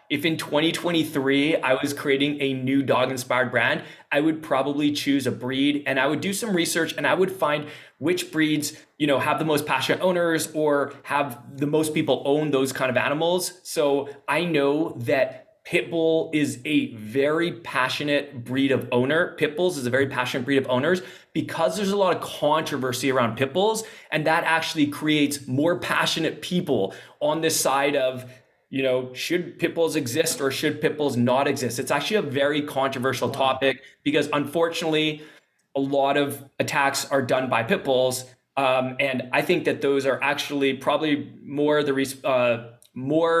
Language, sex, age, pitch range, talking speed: English, male, 20-39, 135-160 Hz, 175 wpm